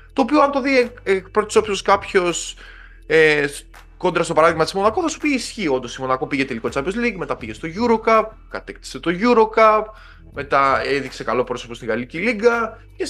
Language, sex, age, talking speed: Greek, male, 20-39, 195 wpm